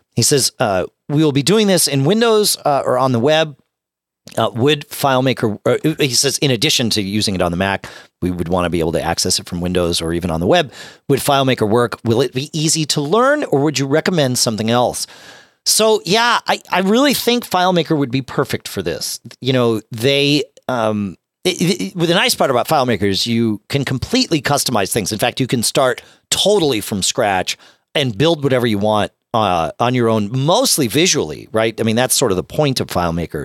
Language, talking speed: English, 210 wpm